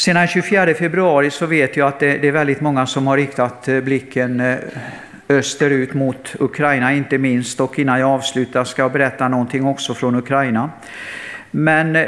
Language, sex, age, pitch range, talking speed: Swedish, male, 50-69, 130-160 Hz, 165 wpm